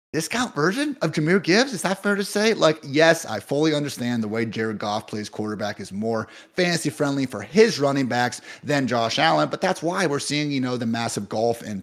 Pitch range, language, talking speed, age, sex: 110-150 Hz, English, 220 wpm, 30-49, male